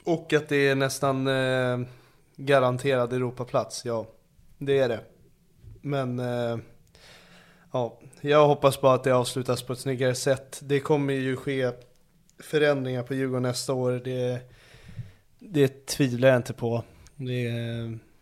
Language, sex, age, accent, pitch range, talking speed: Swedish, male, 20-39, native, 120-140 Hz, 135 wpm